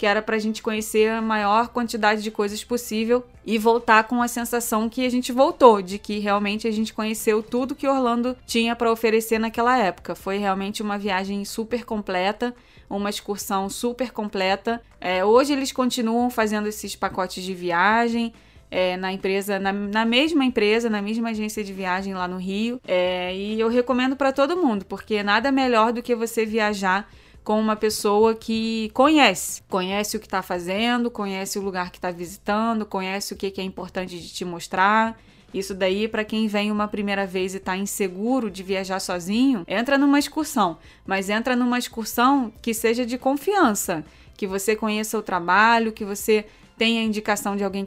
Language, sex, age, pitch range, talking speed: Portuguese, female, 20-39, 195-235 Hz, 180 wpm